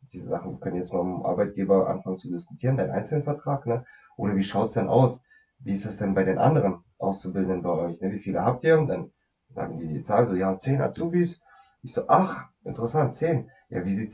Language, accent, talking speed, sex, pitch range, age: German, German, 225 wpm, male, 100-125 Hz, 30-49